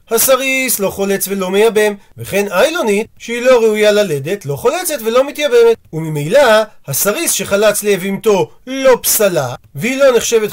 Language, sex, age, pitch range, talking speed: Hebrew, male, 40-59, 180-235 Hz, 135 wpm